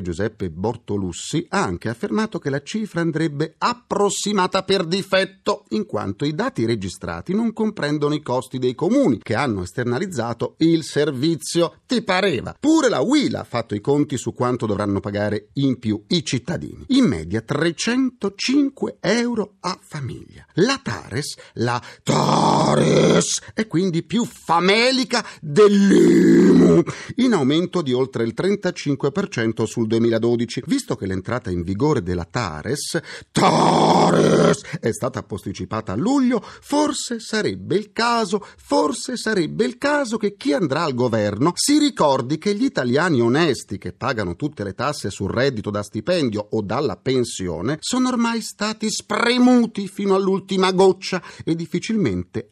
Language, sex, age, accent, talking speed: Italian, male, 40-59, native, 140 wpm